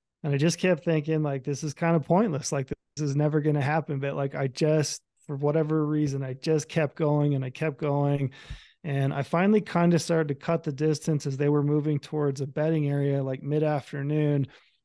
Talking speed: 220 wpm